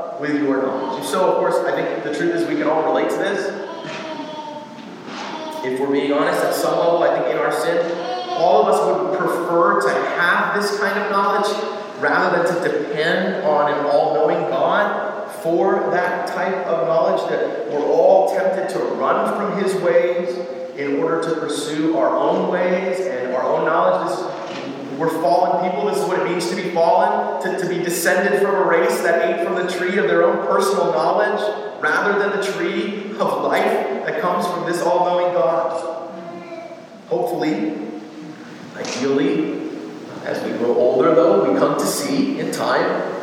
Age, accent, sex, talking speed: 30-49, American, male, 180 wpm